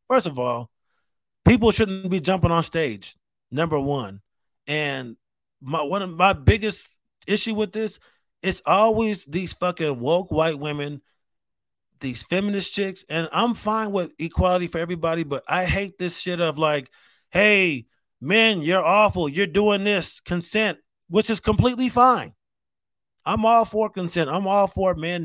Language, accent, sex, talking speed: English, American, male, 145 wpm